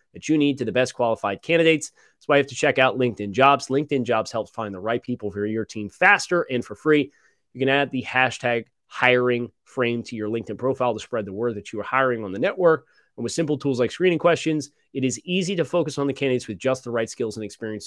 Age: 30-49